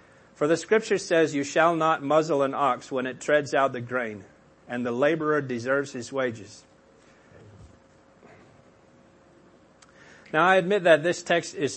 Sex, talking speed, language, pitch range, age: male, 150 wpm, English, 125-165 Hz, 40-59